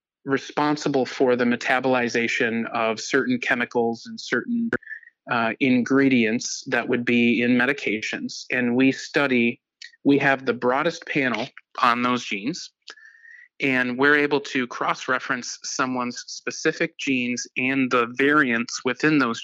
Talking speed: 125 wpm